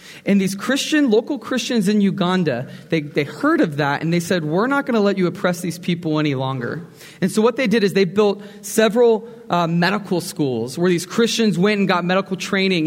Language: English